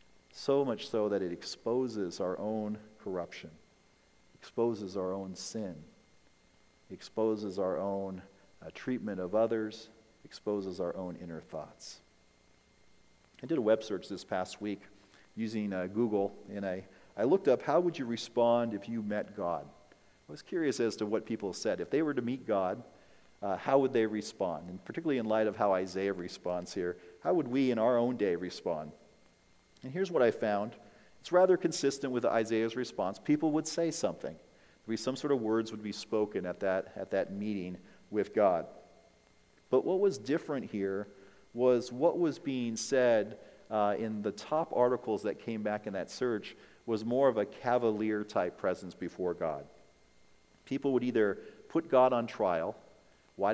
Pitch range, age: 100-125 Hz, 40-59